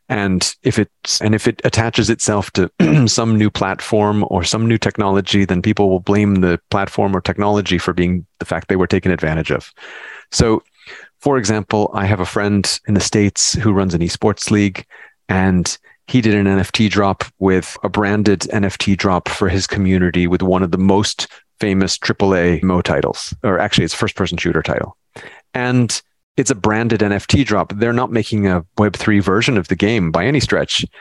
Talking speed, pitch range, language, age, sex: 185 wpm, 95-110 Hz, English, 30-49, male